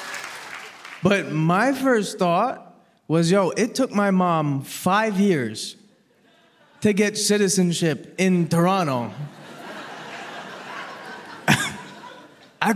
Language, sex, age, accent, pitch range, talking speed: English, male, 20-39, American, 150-195 Hz, 85 wpm